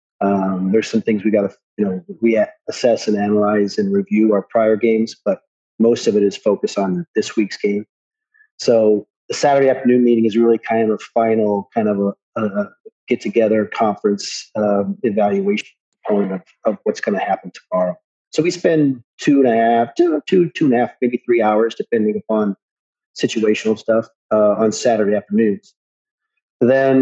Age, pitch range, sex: 40-59, 105-125 Hz, male